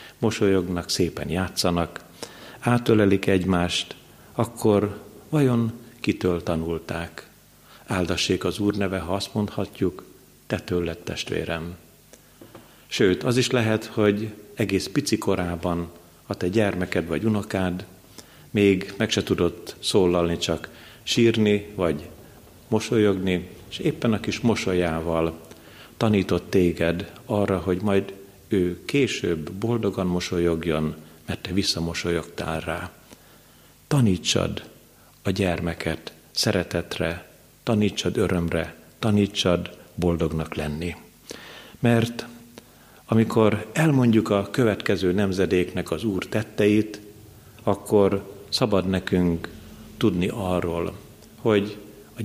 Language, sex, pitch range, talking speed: Hungarian, male, 85-110 Hz, 95 wpm